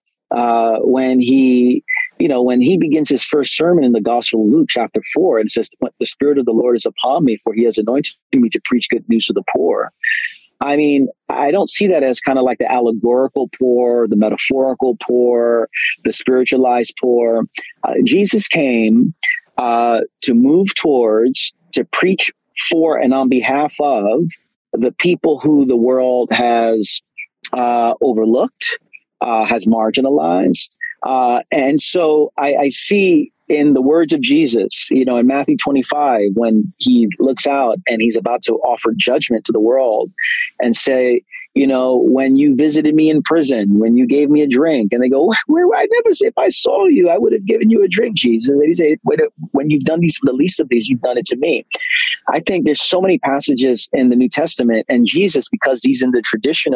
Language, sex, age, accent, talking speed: English, male, 40-59, American, 195 wpm